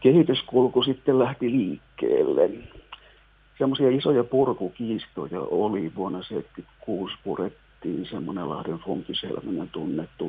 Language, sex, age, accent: Finnish, male, 50-69, native